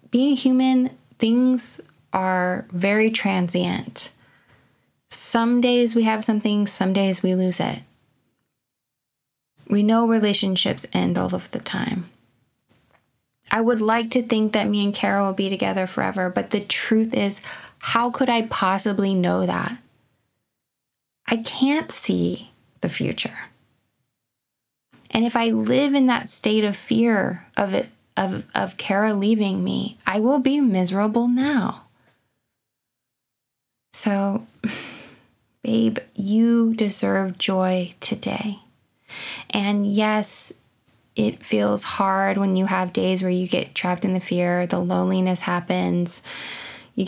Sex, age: female, 20-39